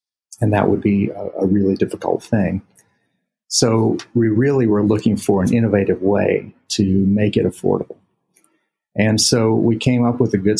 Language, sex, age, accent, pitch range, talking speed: English, male, 50-69, American, 100-110 Hz, 170 wpm